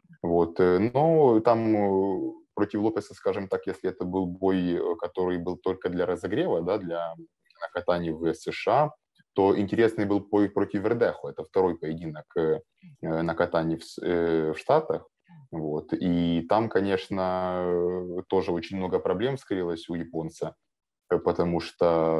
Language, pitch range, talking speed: Ukrainian, 85-105 Hz, 125 wpm